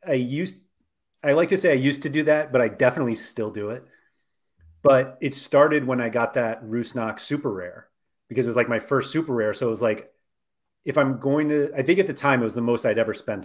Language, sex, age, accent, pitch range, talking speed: English, male, 30-49, American, 110-140 Hz, 245 wpm